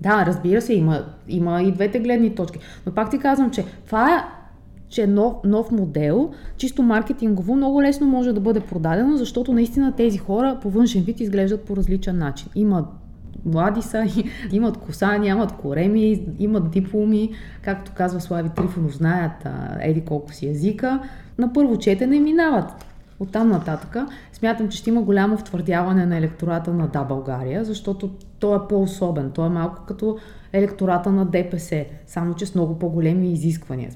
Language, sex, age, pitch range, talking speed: Bulgarian, female, 20-39, 170-220 Hz, 165 wpm